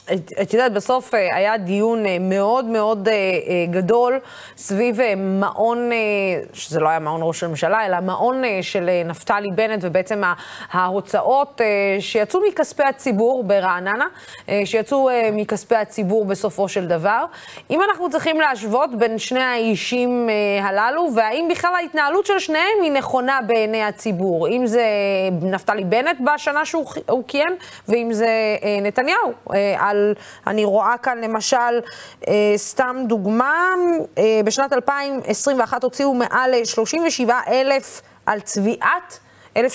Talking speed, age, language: 120 wpm, 20-39, Hebrew